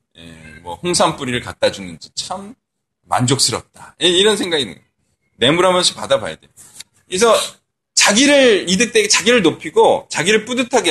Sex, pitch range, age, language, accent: male, 175-255 Hz, 20-39, Korean, native